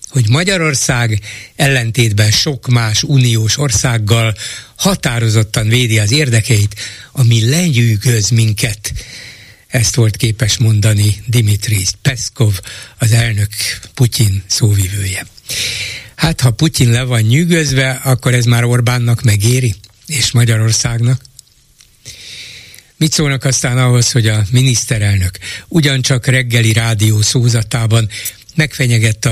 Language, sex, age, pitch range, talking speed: Hungarian, male, 60-79, 110-135 Hz, 100 wpm